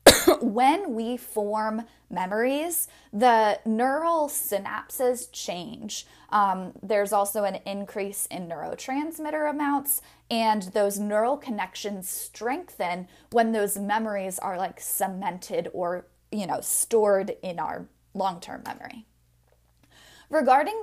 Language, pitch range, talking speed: English, 195-250 Hz, 105 wpm